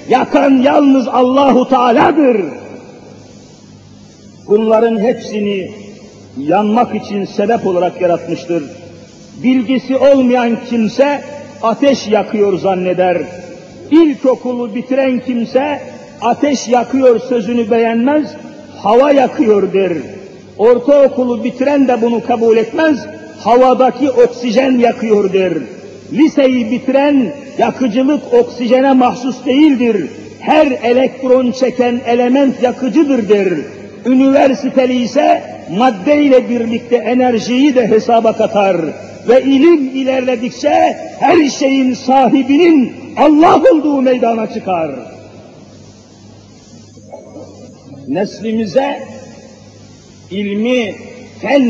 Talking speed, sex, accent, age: 80 wpm, male, native, 50-69